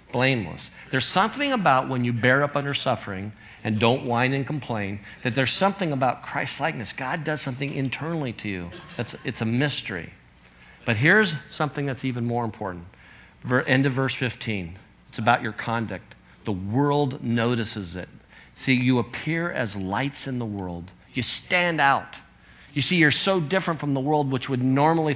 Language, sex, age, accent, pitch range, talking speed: English, male, 50-69, American, 115-150 Hz, 175 wpm